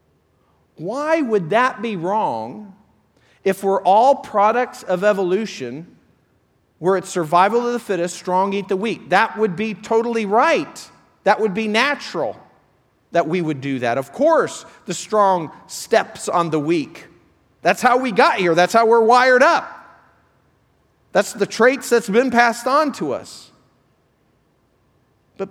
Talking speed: 150 wpm